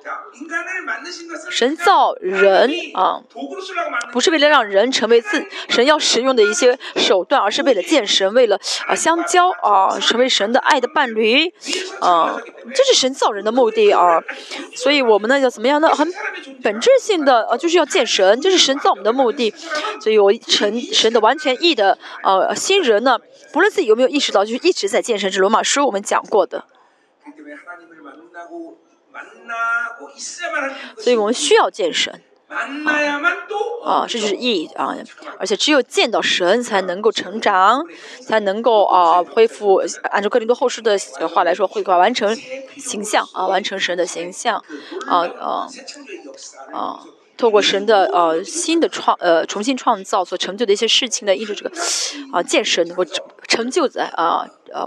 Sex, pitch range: female, 210-340 Hz